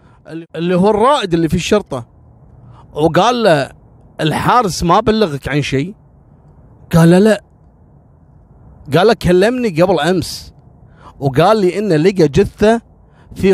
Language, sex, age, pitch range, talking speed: Arabic, male, 30-49, 135-195 Hz, 115 wpm